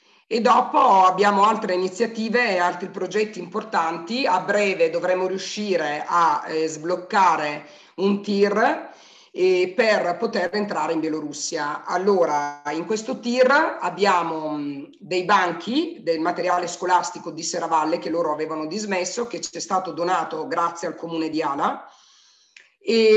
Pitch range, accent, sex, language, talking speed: 160-205 Hz, native, female, Italian, 130 wpm